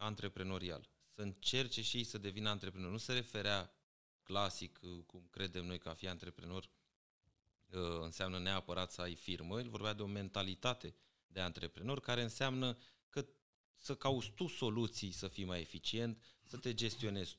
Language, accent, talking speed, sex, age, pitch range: Romanian, native, 155 wpm, male, 30-49, 90-110 Hz